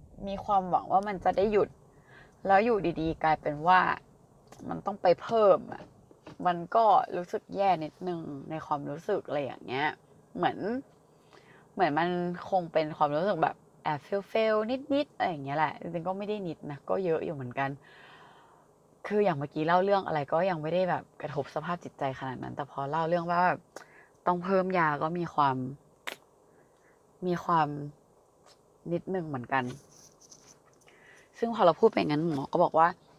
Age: 20-39